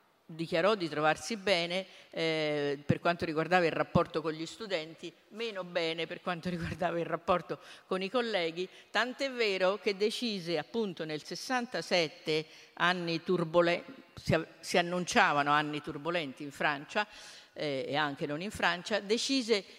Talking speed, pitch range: 140 wpm, 160-205 Hz